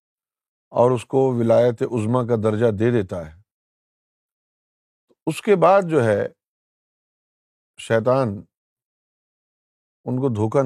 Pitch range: 110-140 Hz